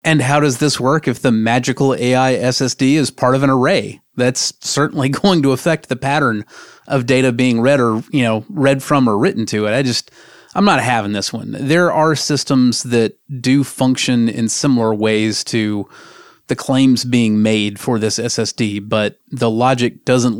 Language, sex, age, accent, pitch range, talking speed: English, male, 30-49, American, 115-135 Hz, 185 wpm